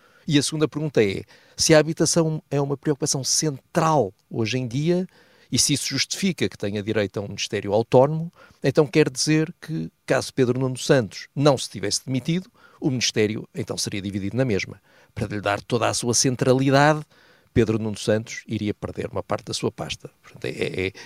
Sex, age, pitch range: male, 50-69, 110-150 Hz